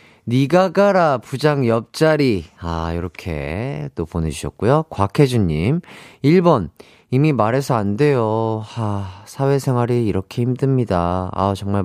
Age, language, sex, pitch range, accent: 30-49, Korean, male, 100-145 Hz, native